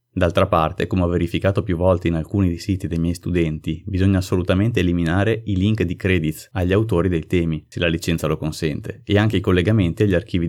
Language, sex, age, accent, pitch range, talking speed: Italian, male, 30-49, native, 85-105 Hz, 205 wpm